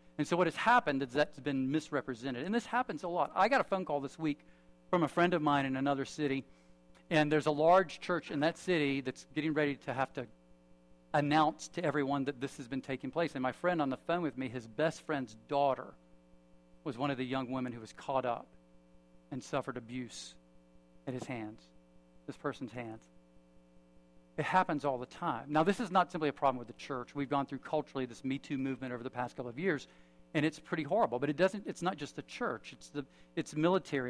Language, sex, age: English, male, 50-69